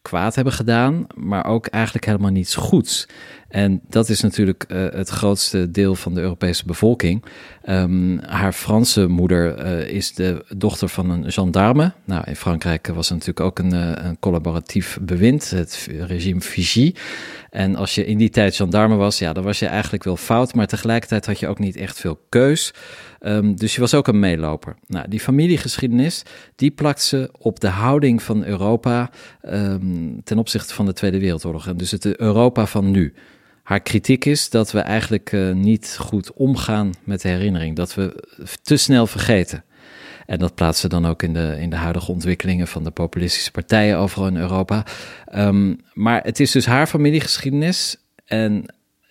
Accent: Dutch